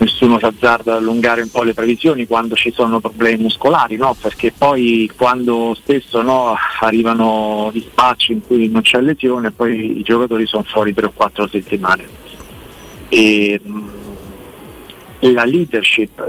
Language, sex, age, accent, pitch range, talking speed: Italian, male, 50-69, native, 115-140 Hz, 150 wpm